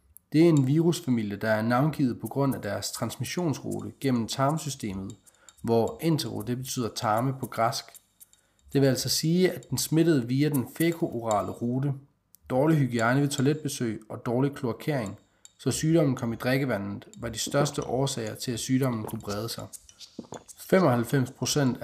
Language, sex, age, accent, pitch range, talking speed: Danish, male, 30-49, native, 115-145 Hz, 150 wpm